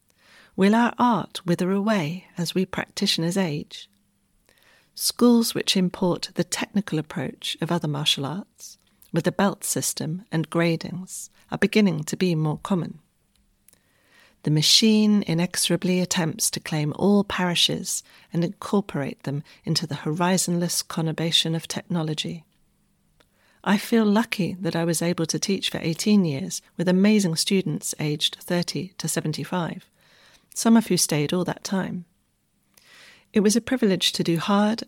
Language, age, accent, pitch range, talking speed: English, 40-59, British, 160-200 Hz, 140 wpm